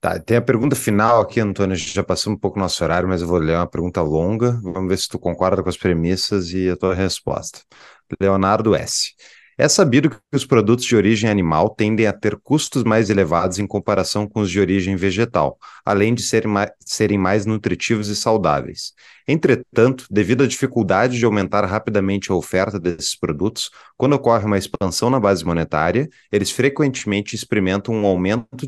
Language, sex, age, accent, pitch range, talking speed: Portuguese, male, 30-49, Brazilian, 100-120 Hz, 185 wpm